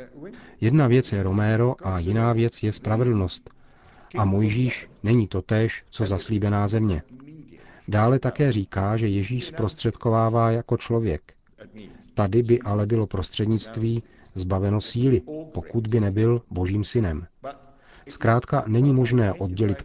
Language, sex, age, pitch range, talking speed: Czech, male, 40-59, 100-125 Hz, 125 wpm